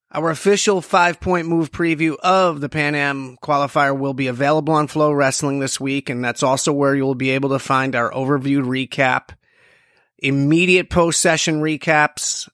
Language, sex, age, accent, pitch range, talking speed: English, male, 30-49, American, 130-165 Hz, 160 wpm